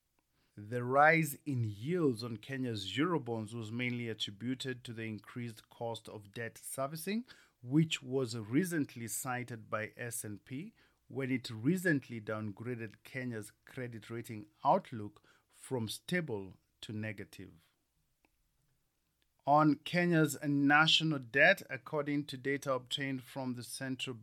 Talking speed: 115 wpm